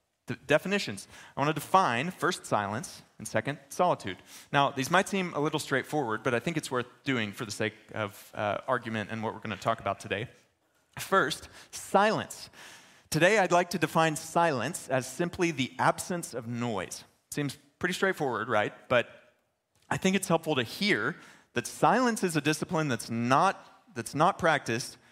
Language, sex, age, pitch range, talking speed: English, male, 30-49, 115-155 Hz, 170 wpm